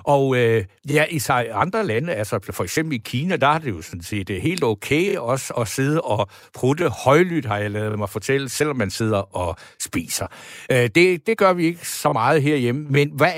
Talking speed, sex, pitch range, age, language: 215 wpm, male, 120-155 Hz, 60-79, Danish